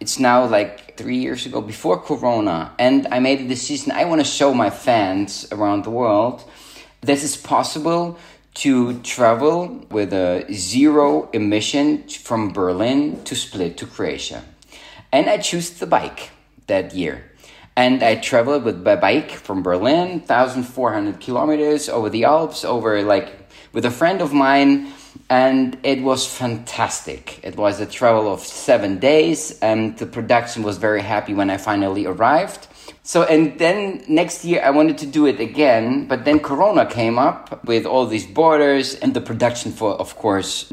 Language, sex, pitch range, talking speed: English, male, 110-155 Hz, 160 wpm